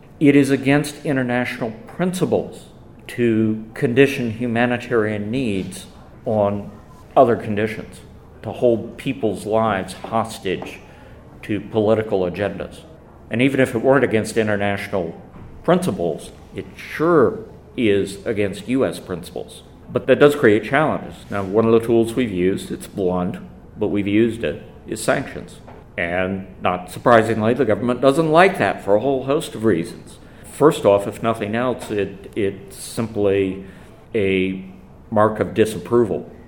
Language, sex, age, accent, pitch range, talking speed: English, male, 50-69, American, 95-115 Hz, 130 wpm